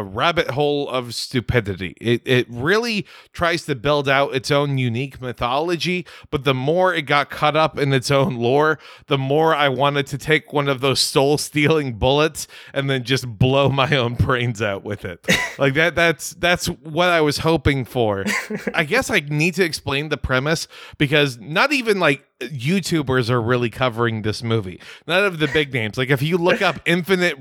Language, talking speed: English, 185 wpm